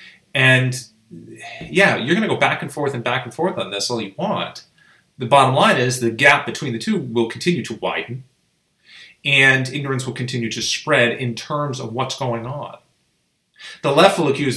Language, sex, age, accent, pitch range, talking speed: English, male, 30-49, American, 120-145 Hz, 195 wpm